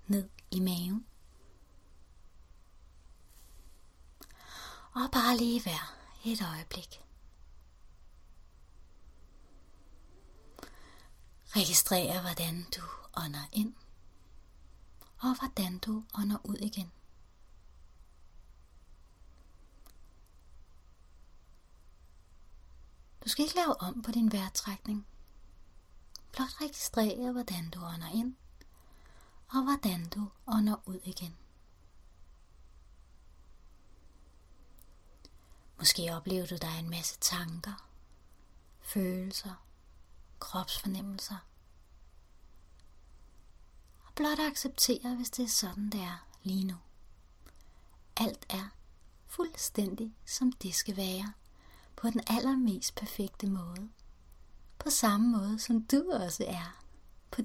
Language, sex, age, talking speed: Danish, female, 30-49, 85 wpm